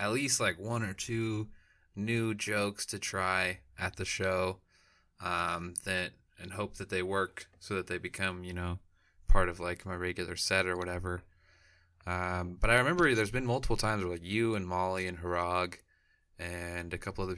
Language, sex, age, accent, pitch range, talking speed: English, male, 20-39, American, 90-100 Hz, 185 wpm